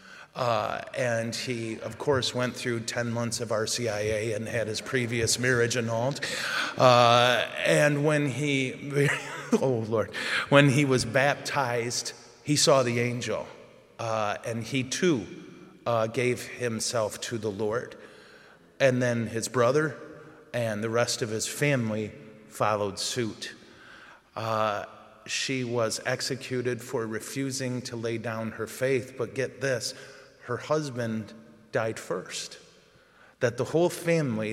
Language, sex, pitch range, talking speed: English, male, 115-130 Hz, 130 wpm